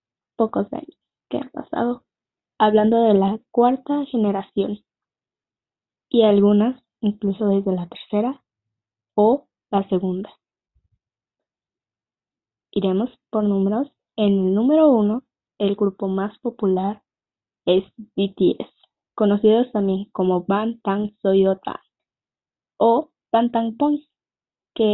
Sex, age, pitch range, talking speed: female, 10-29, 195-230 Hz, 105 wpm